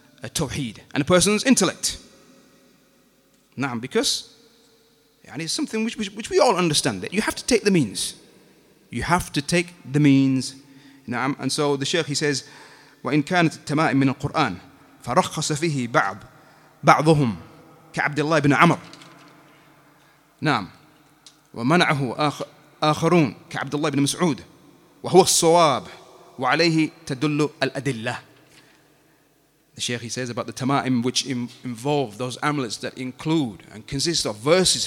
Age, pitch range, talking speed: 30-49, 135-165 Hz, 90 wpm